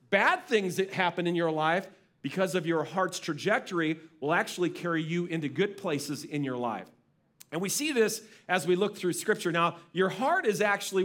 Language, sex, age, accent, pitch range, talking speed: English, male, 40-59, American, 165-190 Hz, 195 wpm